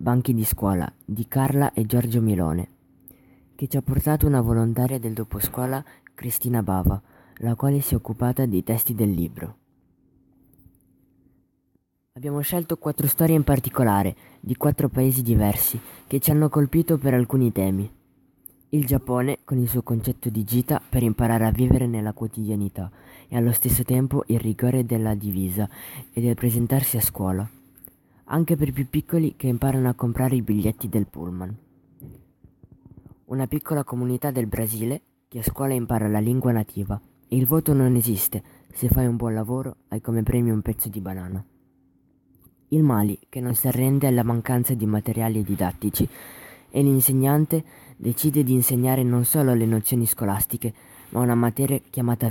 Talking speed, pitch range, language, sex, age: 160 wpm, 105-135 Hz, Italian, female, 20-39